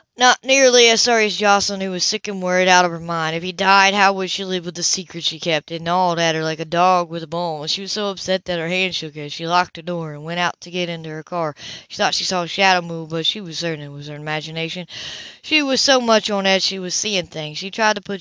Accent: American